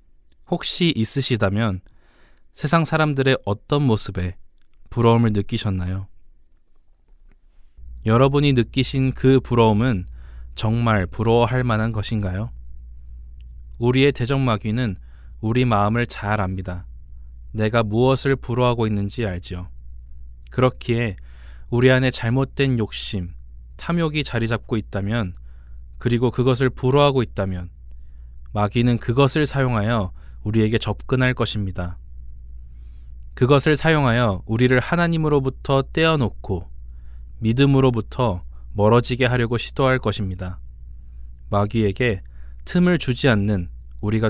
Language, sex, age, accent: Korean, male, 20-39, native